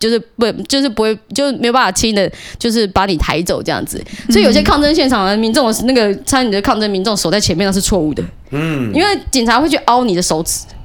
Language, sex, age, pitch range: Chinese, female, 20-39, 190-255 Hz